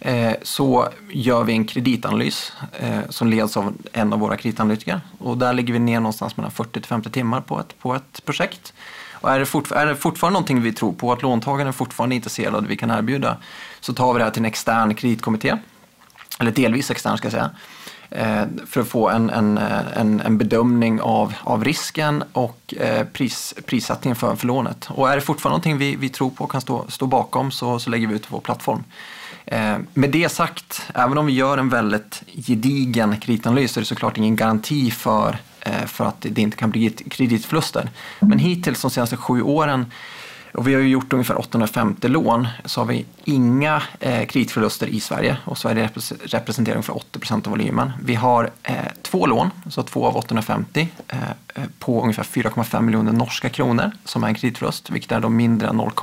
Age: 20-39